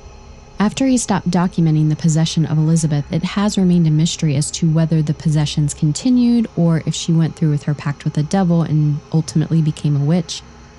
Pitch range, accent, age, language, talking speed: 150-170 Hz, American, 20-39, English, 195 wpm